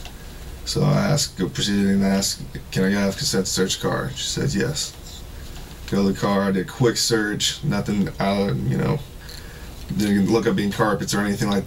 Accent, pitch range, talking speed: American, 80-105 Hz, 190 wpm